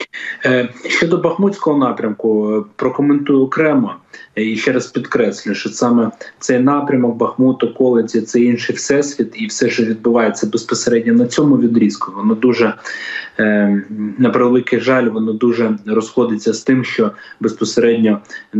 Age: 20-39